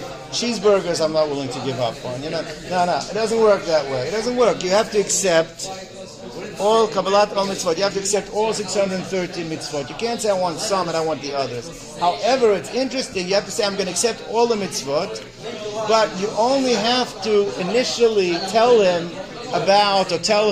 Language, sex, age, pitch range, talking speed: English, male, 50-69, 180-225 Hz, 210 wpm